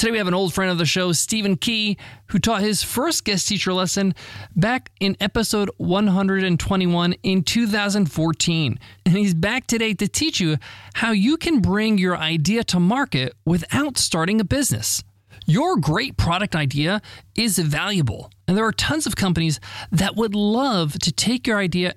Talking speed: 170 wpm